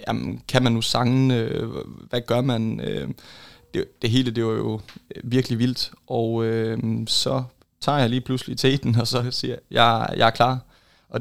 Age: 20-39